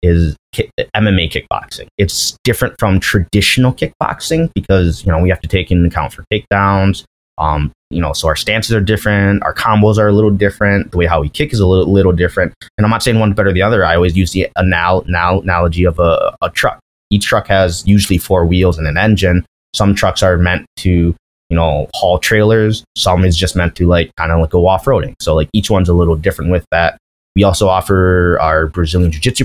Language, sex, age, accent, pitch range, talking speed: English, male, 20-39, American, 85-100 Hz, 220 wpm